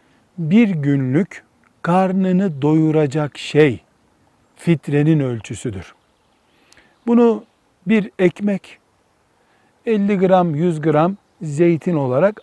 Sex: male